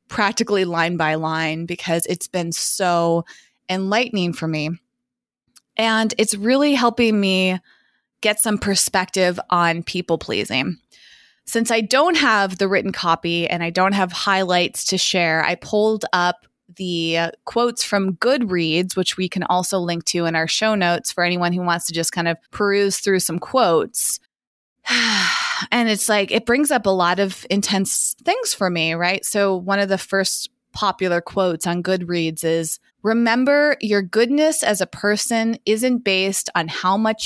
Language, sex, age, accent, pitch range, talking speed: English, female, 20-39, American, 175-220 Hz, 160 wpm